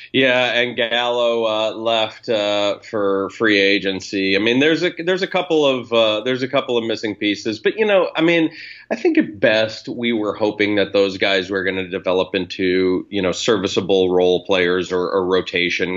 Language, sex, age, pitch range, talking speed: English, male, 40-59, 100-130 Hz, 195 wpm